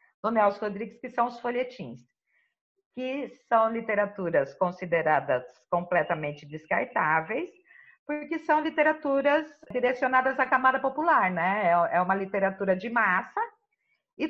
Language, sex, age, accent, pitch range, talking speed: Portuguese, female, 50-69, Brazilian, 185-255 Hz, 115 wpm